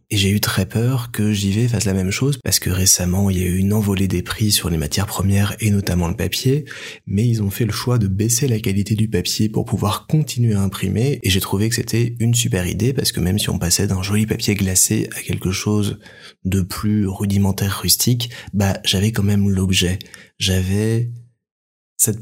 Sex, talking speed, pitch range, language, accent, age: male, 215 wpm, 95-115 Hz, French, French, 20-39